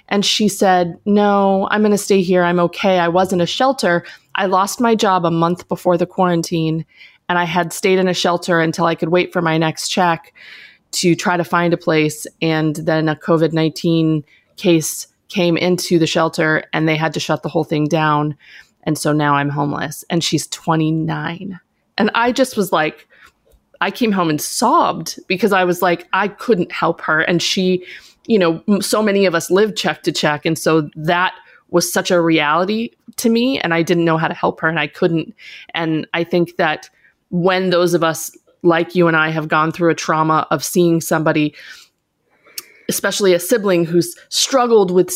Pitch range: 165-195 Hz